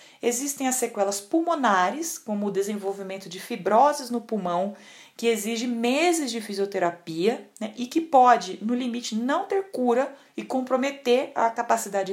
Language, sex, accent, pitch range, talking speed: Portuguese, female, Brazilian, 200-275 Hz, 145 wpm